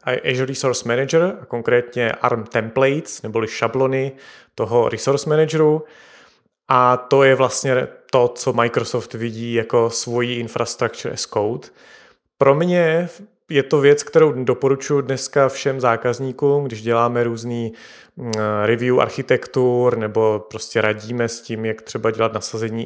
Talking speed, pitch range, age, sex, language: 130 wpm, 115-145 Hz, 30-49, male, Czech